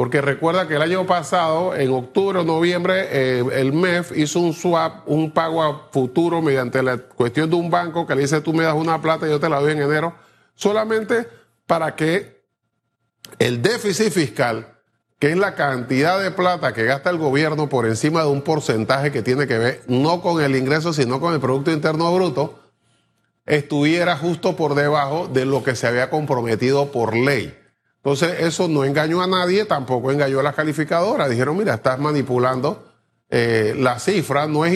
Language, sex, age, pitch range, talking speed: Spanish, male, 30-49, 130-165 Hz, 185 wpm